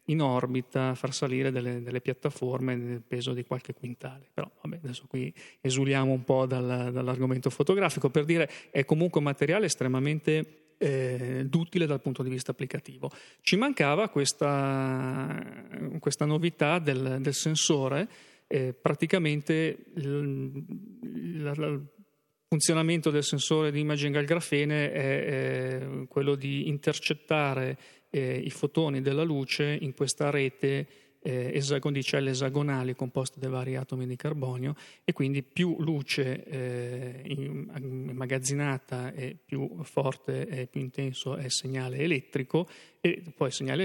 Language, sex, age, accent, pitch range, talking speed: Italian, male, 30-49, native, 130-150 Hz, 135 wpm